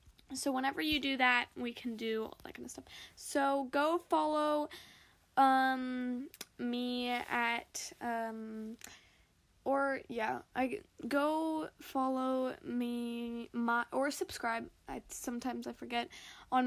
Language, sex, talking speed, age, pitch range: English, female, 120 wpm, 10-29, 245-300 Hz